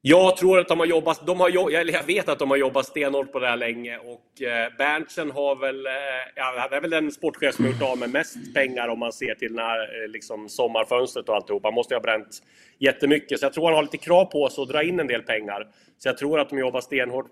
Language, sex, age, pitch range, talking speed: Swedish, male, 30-49, 110-150 Hz, 245 wpm